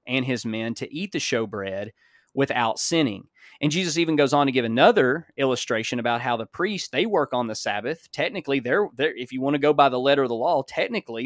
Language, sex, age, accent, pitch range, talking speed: English, male, 20-39, American, 120-170 Hz, 225 wpm